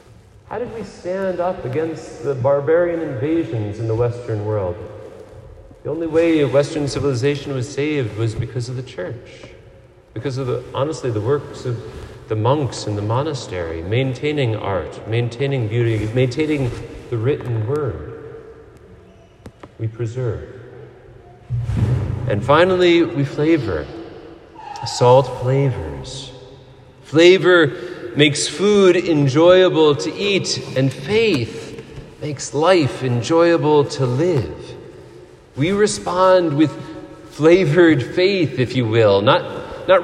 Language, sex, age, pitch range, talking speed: English, male, 40-59, 125-165 Hz, 115 wpm